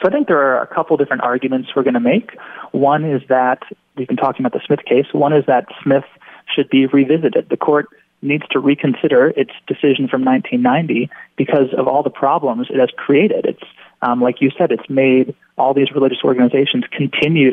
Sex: male